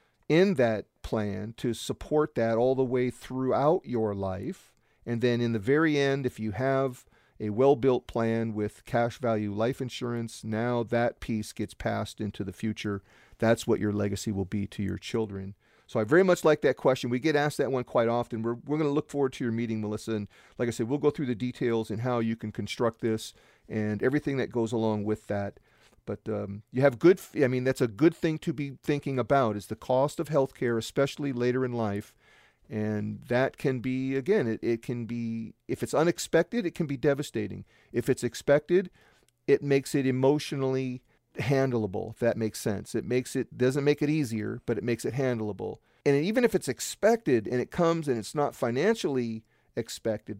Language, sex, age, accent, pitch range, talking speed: English, male, 40-59, American, 110-140 Hz, 200 wpm